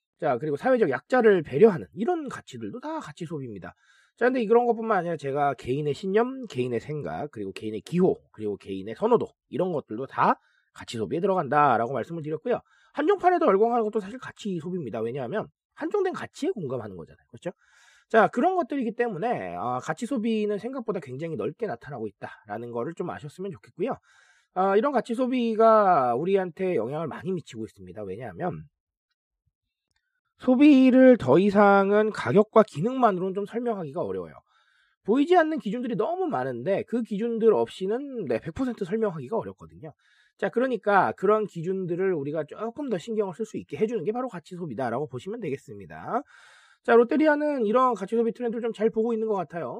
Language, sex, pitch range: Korean, male, 160-235 Hz